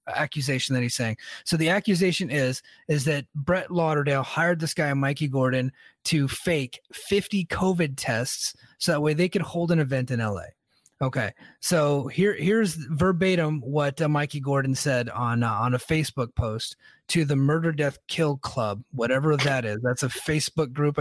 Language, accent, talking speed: English, American, 175 wpm